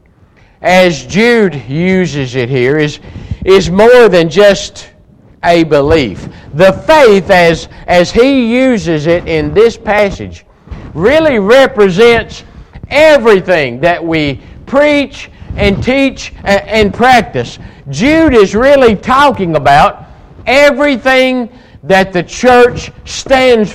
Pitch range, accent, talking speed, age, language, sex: 145-235 Hz, American, 110 wpm, 50-69, English, male